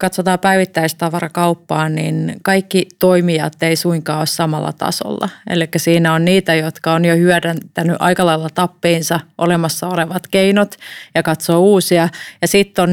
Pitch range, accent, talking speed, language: 165-180 Hz, native, 140 wpm, Finnish